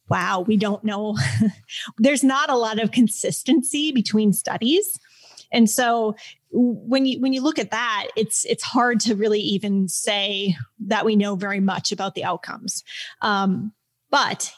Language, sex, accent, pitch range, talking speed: English, female, American, 195-235 Hz, 155 wpm